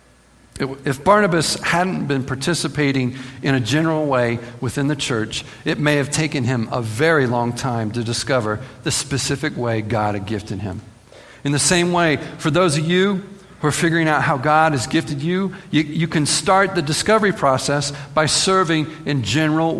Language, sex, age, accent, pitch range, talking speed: English, male, 50-69, American, 125-160 Hz, 175 wpm